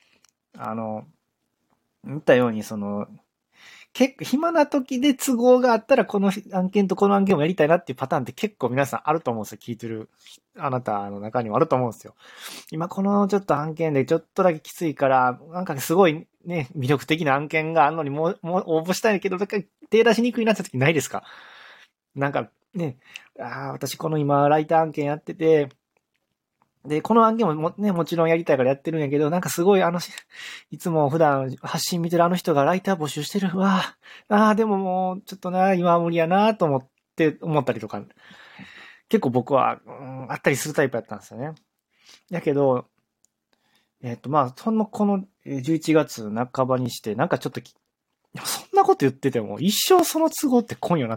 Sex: male